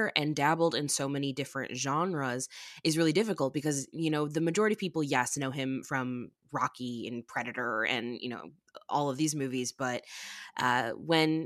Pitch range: 135-170 Hz